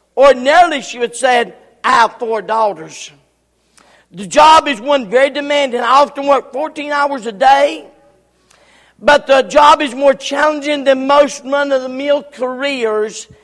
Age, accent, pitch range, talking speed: 50-69, American, 235-290 Hz, 140 wpm